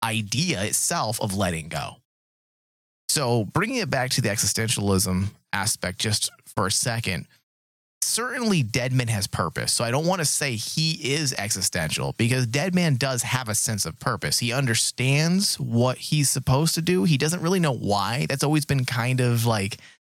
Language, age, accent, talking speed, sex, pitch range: English, 30-49, American, 170 wpm, male, 110-135 Hz